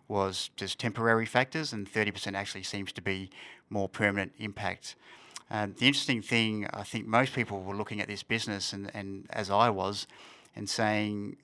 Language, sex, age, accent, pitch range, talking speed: English, male, 30-49, Australian, 100-110 Hz, 175 wpm